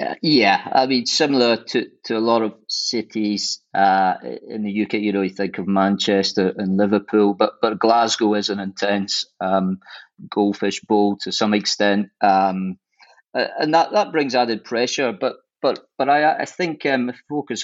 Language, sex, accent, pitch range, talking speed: English, male, British, 100-115 Hz, 170 wpm